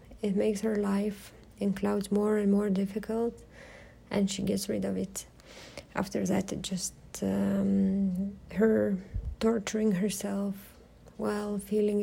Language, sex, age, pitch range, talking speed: French, female, 30-49, 190-215 Hz, 130 wpm